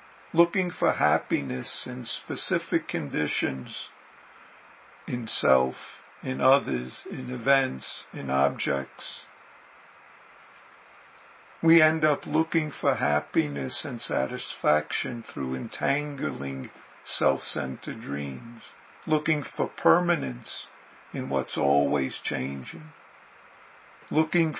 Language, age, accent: English, 50-69, American